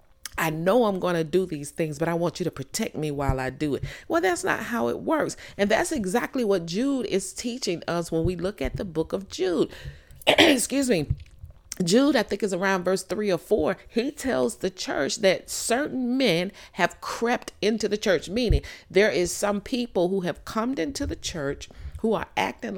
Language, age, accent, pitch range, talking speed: English, 40-59, American, 165-215 Hz, 205 wpm